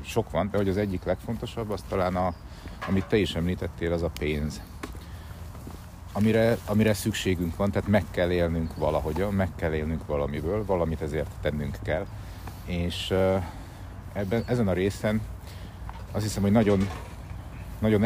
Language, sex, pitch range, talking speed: Hungarian, male, 85-105 Hz, 145 wpm